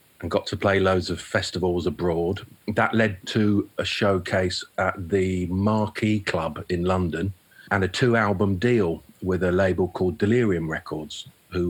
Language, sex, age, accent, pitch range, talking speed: English, male, 40-59, British, 85-100 Hz, 155 wpm